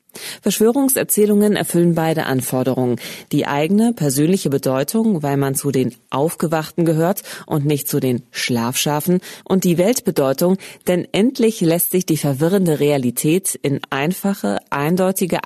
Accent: German